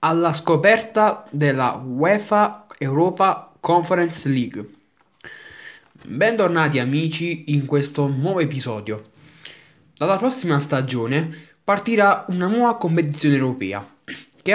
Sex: male